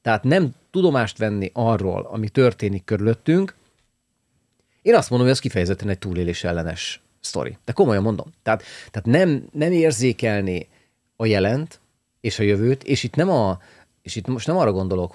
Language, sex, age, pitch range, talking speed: Hungarian, male, 40-59, 100-130 Hz, 150 wpm